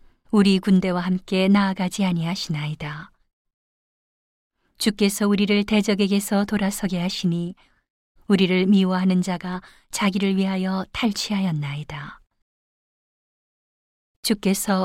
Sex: female